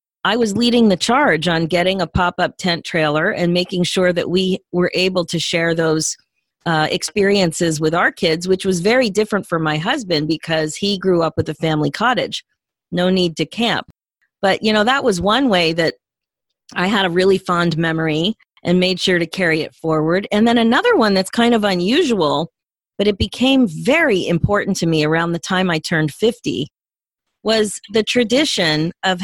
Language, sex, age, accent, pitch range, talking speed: English, female, 40-59, American, 165-215 Hz, 185 wpm